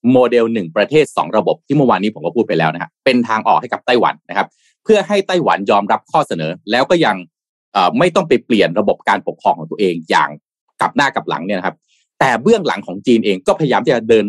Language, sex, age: Thai, male, 20-39